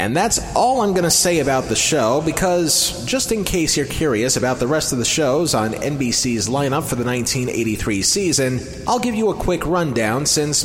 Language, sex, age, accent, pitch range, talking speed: English, male, 30-49, American, 125-180 Hz, 205 wpm